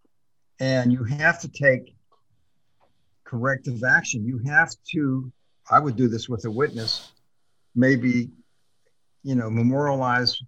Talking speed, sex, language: 120 wpm, male, English